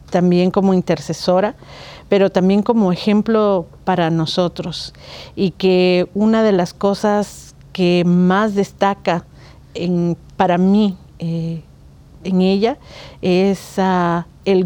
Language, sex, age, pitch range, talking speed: Spanish, female, 50-69, 170-195 Hz, 110 wpm